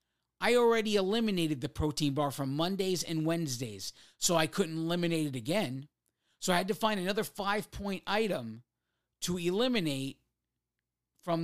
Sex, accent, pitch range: male, American, 150-185 Hz